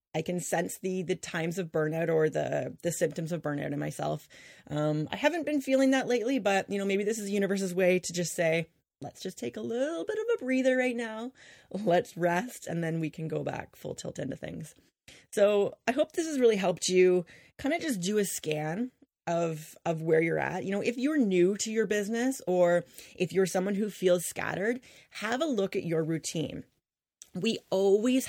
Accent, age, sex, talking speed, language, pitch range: American, 30-49, female, 210 wpm, English, 170-220 Hz